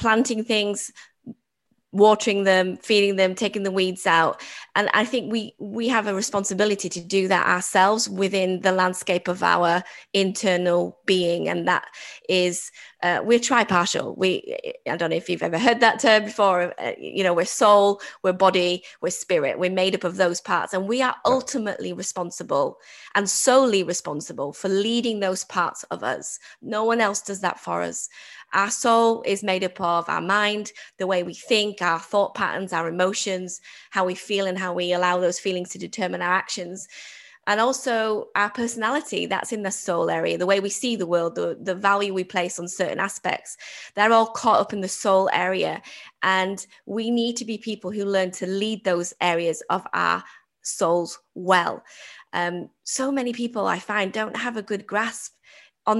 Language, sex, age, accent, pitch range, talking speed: English, female, 20-39, British, 185-220 Hz, 185 wpm